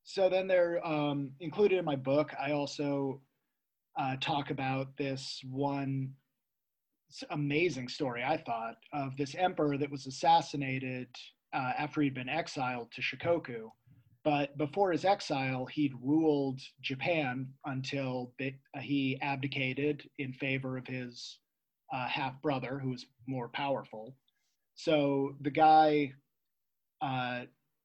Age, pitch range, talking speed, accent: 30-49, 130-150 Hz, 125 wpm, American